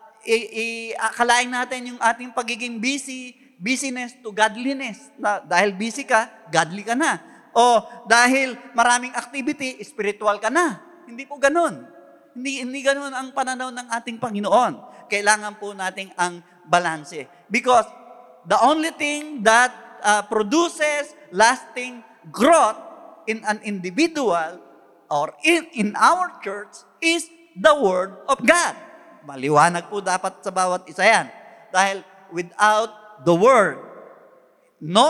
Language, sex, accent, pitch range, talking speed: Filipino, male, native, 175-255 Hz, 130 wpm